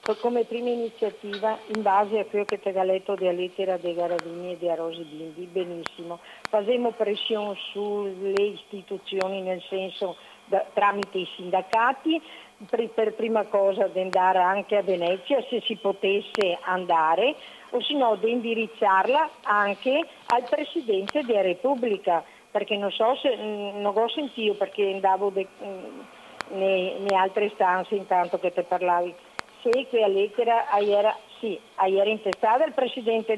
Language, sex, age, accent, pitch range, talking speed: Italian, female, 50-69, native, 190-235 Hz, 145 wpm